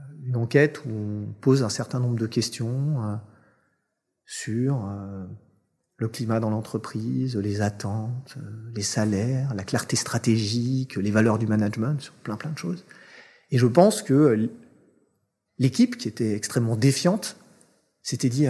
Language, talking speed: French, 145 wpm